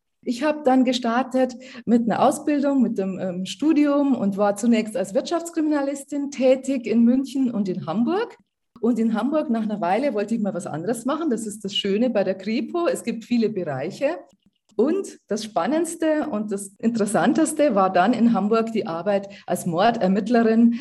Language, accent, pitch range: German, German, 195-255 Hz